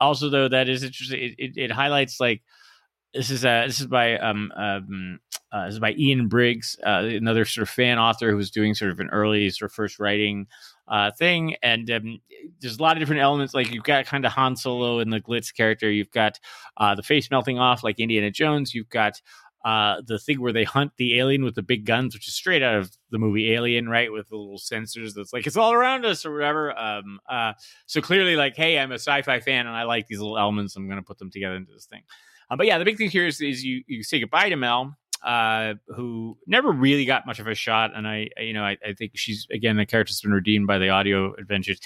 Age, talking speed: 30-49, 250 wpm